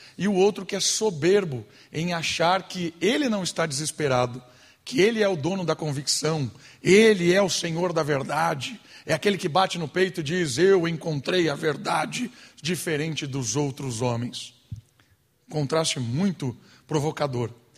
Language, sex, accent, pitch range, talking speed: Portuguese, male, Brazilian, 135-195 Hz, 150 wpm